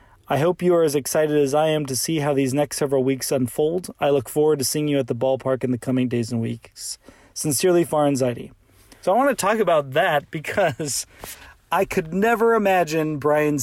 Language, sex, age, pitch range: English, male, 30-49, 135-165 Hz